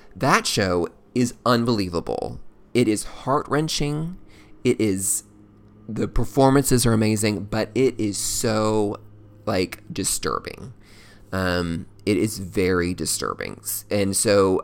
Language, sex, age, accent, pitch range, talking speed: English, male, 30-49, American, 90-110 Hz, 105 wpm